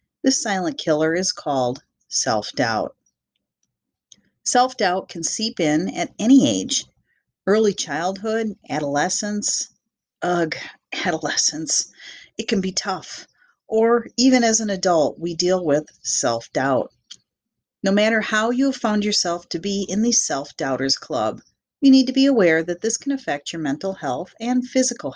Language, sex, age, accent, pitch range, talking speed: English, female, 40-59, American, 155-220 Hz, 140 wpm